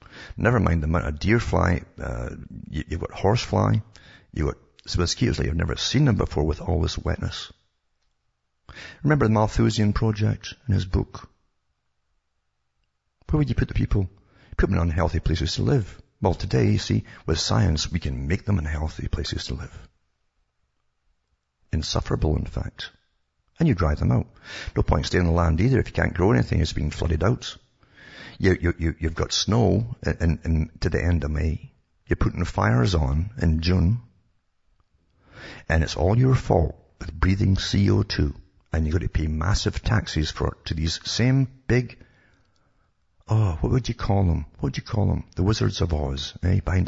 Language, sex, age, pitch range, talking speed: English, male, 60-79, 80-105 Hz, 185 wpm